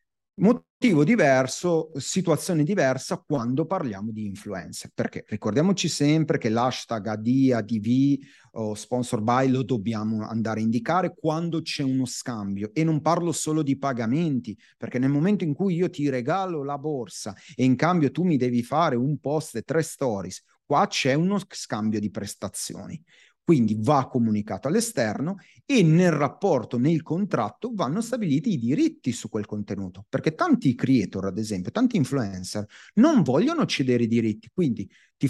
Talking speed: 155 wpm